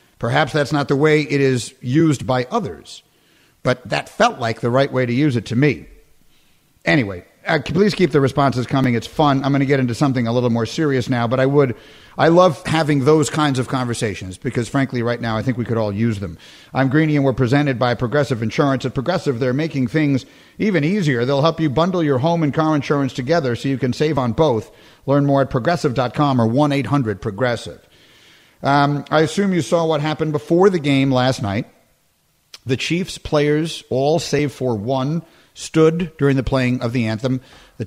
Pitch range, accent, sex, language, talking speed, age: 125-155 Hz, American, male, English, 200 wpm, 50-69